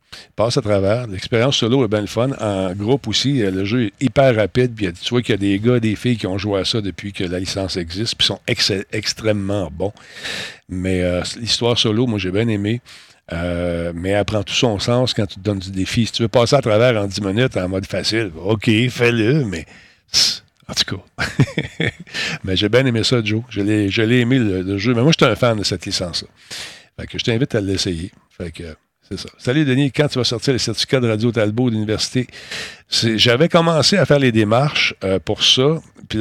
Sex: male